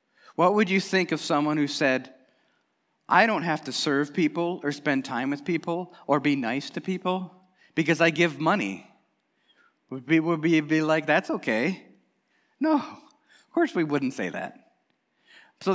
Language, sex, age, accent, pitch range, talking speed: English, male, 30-49, American, 140-210 Hz, 170 wpm